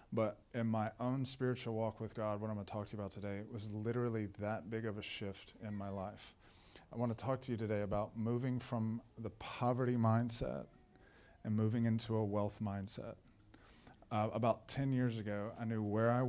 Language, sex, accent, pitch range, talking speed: English, male, American, 105-115 Hz, 205 wpm